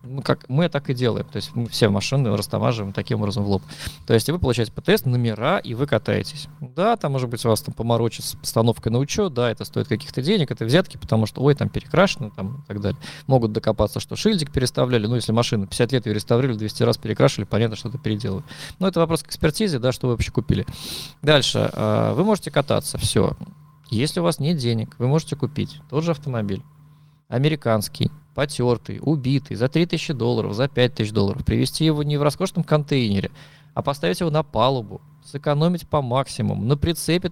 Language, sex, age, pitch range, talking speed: Russian, male, 20-39, 115-150 Hz, 200 wpm